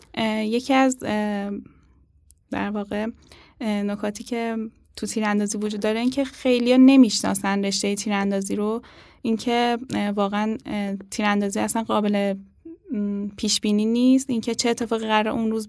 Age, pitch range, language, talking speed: 10-29, 200-230 Hz, Persian, 125 wpm